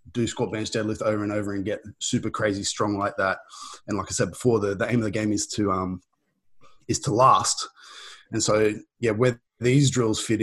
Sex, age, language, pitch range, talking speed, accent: male, 20-39, English, 100-120 Hz, 220 wpm, Australian